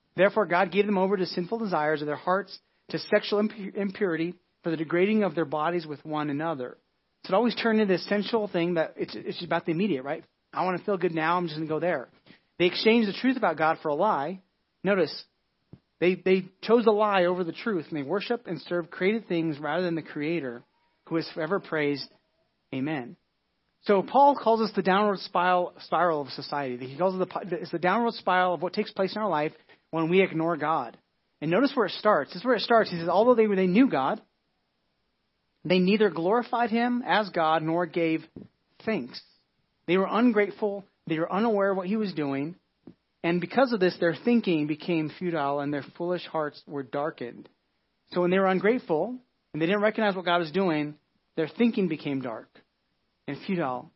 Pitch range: 160-205 Hz